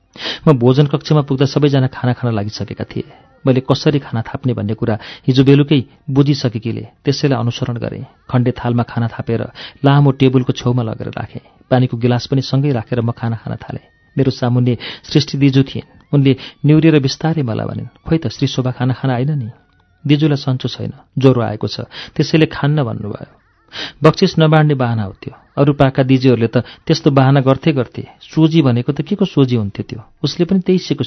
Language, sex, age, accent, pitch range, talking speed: English, male, 40-59, Indian, 120-150 Hz, 125 wpm